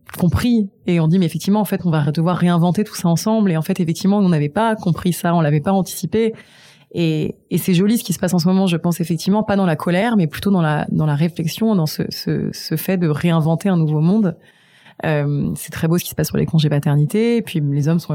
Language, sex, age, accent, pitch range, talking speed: French, female, 20-39, French, 155-190 Hz, 260 wpm